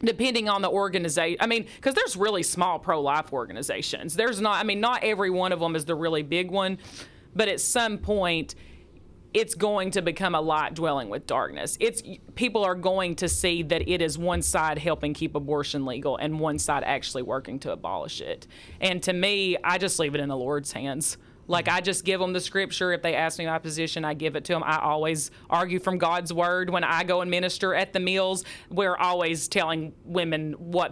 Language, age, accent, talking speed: English, 30-49, American, 215 wpm